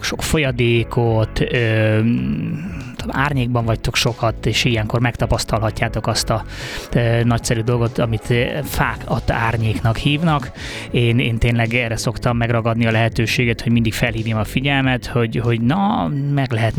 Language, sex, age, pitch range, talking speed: Hungarian, male, 20-39, 110-125 Hz, 125 wpm